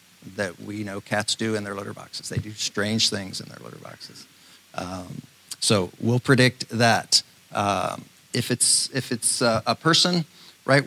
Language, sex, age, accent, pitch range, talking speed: English, male, 50-69, American, 100-120 Hz, 170 wpm